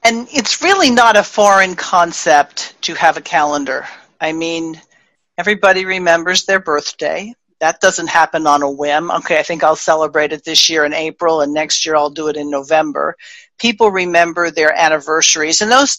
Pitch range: 170-225 Hz